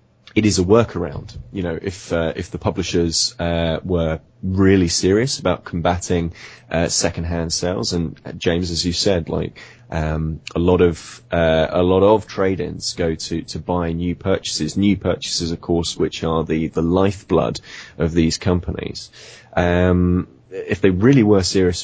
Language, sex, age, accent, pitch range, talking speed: English, male, 20-39, British, 85-100 Hz, 165 wpm